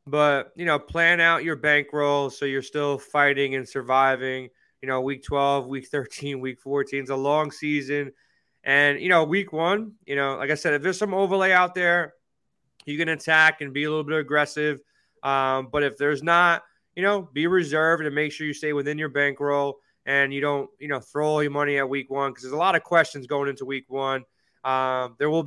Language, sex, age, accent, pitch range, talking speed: English, male, 20-39, American, 140-155 Hz, 215 wpm